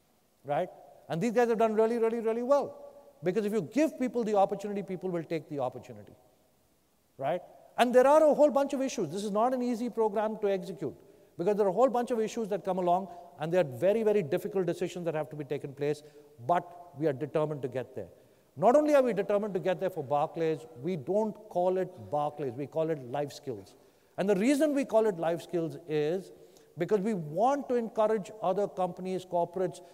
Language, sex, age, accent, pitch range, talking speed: English, male, 50-69, Indian, 165-220 Hz, 215 wpm